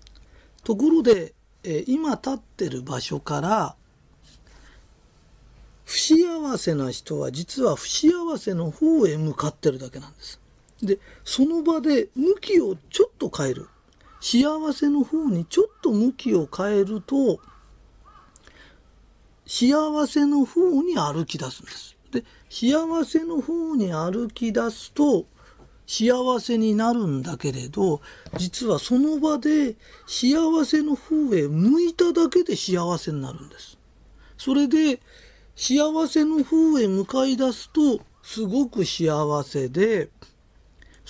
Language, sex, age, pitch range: Japanese, male, 40-59, 190-305 Hz